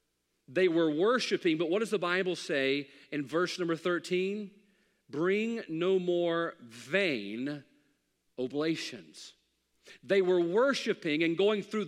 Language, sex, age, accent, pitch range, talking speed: English, male, 40-59, American, 135-205 Hz, 120 wpm